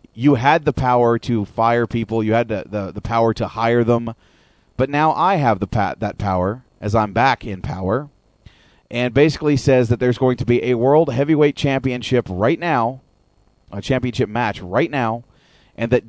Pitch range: 105-135 Hz